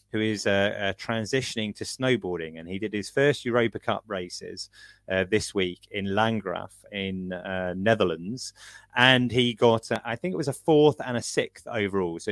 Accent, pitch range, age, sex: British, 100-130 Hz, 30-49, male